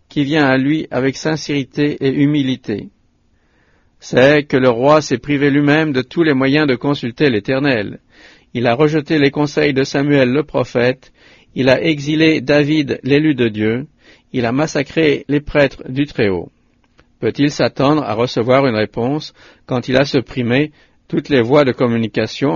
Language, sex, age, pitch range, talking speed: English, male, 50-69, 130-155 Hz, 160 wpm